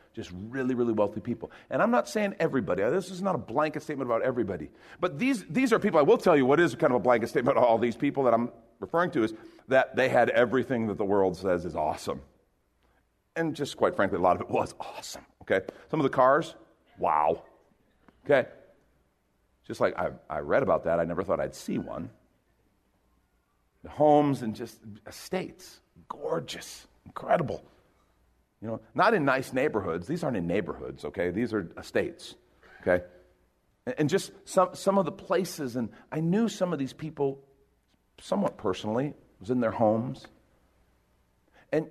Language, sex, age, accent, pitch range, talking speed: English, male, 50-69, American, 110-185 Hz, 180 wpm